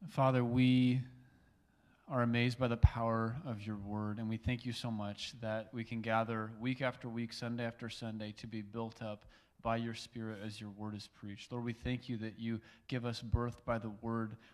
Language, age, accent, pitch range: English, 30-49, American, 110-125 Hz